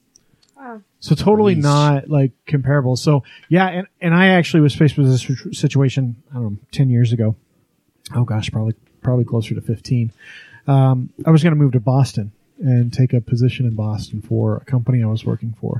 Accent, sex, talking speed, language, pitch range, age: American, male, 185 wpm, English, 120-150 Hz, 30-49